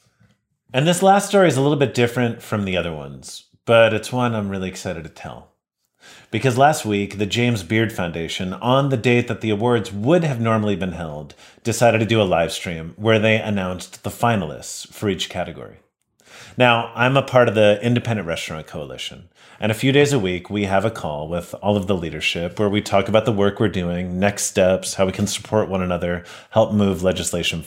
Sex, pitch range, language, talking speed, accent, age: male, 95-125 Hz, English, 210 wpm, American, 30-49